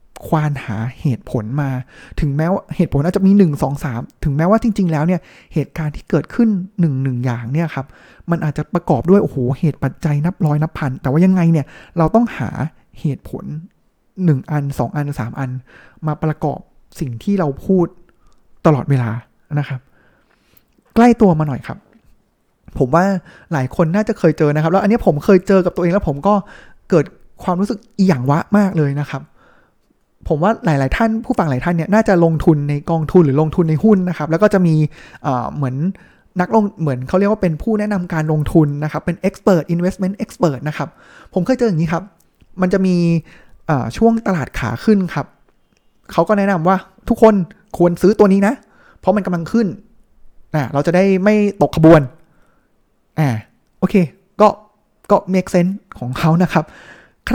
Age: 20-39